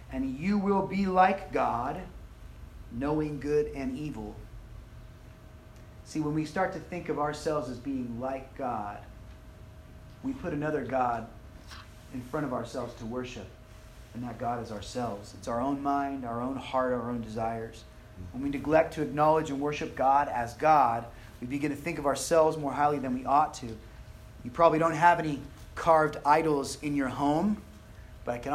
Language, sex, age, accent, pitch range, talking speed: English, male, 30-49, American, 110-145 Hz, 170 wpm